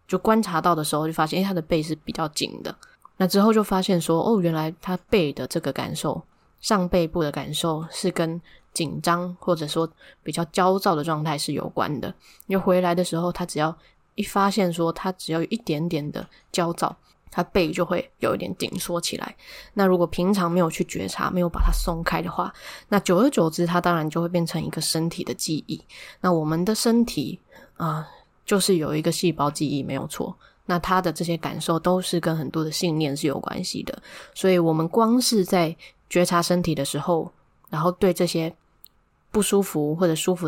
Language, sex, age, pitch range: Chinese, female, 10-29, 160-185 Hz